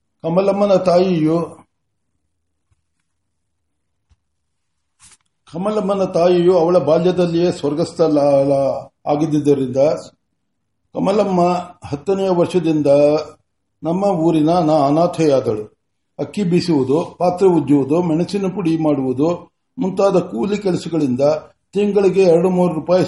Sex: male